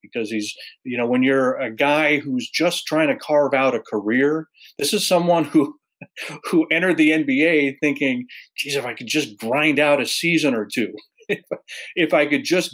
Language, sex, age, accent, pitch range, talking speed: English, male, 40-59, American, 125-160 Hz, 195 wpm